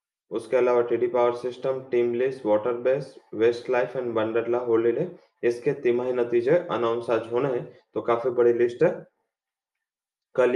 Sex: male